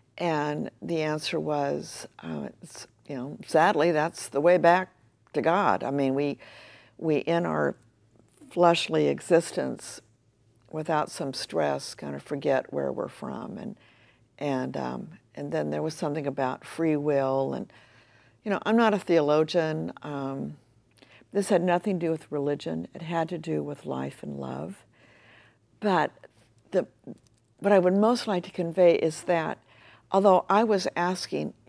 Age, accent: 60-79, American